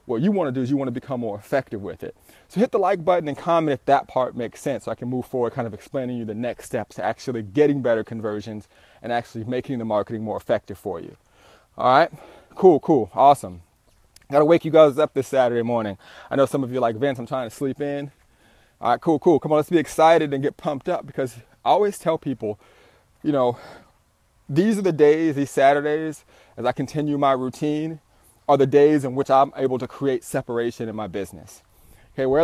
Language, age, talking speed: English, 30-49, 230 wpm